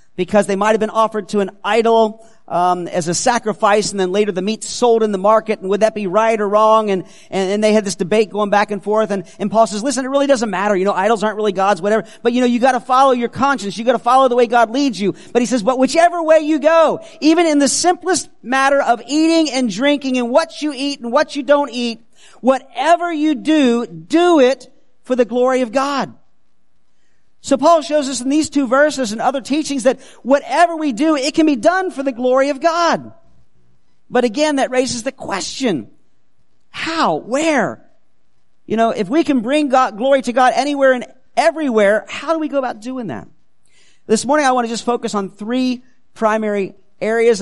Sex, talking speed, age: male, 220 wpm, 40-59